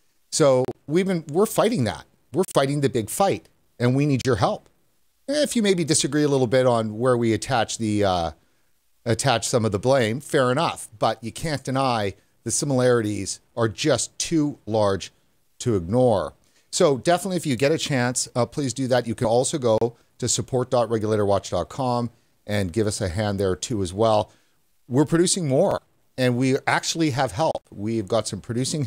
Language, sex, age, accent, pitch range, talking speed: English, male, 40-59, American, 105-135 Hz, 180 wpm